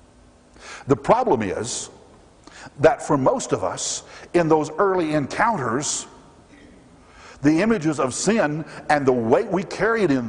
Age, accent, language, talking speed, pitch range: 60-79, American, English, 130 wpm, 145-240 Hz